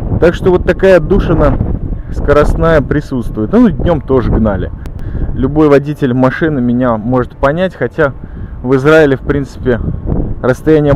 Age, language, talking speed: 20-39, Russian, 130 wpm